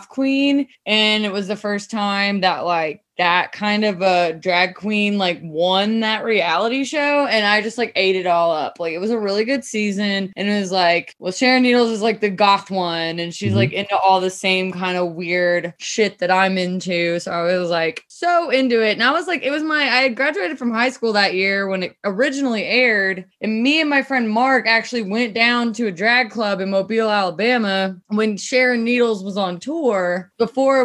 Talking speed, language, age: 215 wpm, English, 20-39